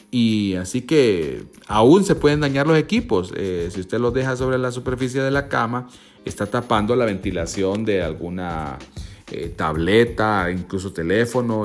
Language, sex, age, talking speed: Spanish, male, 40-59, 155 wpm